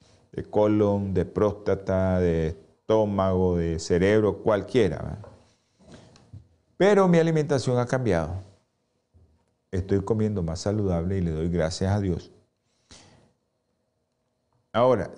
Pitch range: 90-120 Hz